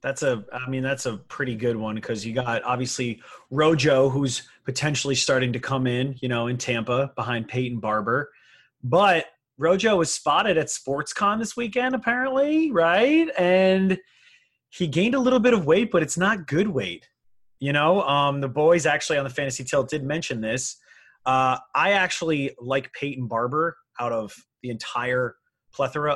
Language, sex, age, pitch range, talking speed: English, male, 30-49, 125-160 Hz, 170 wpm